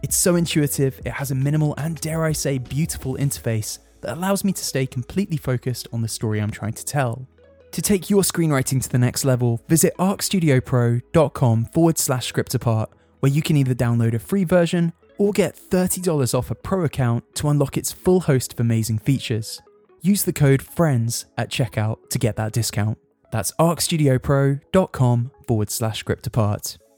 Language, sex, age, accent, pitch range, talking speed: English, male, 20-39, British, 115-145 Hz, 175 wpm